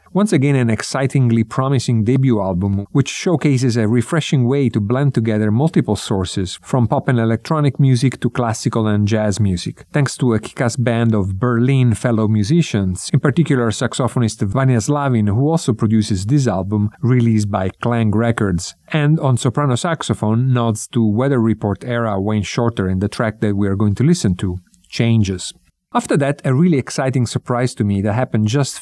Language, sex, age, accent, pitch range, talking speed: English, male, 40-59, Italian, 110-130 Hz, 175 wpm